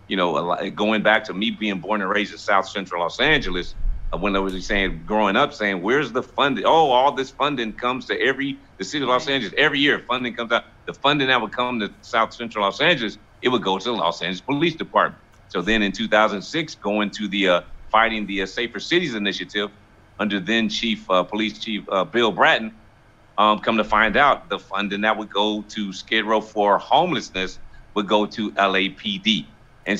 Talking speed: 210 wpm